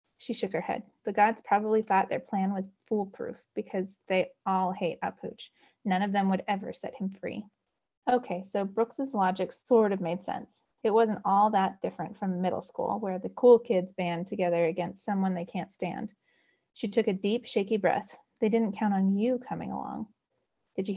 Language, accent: English, American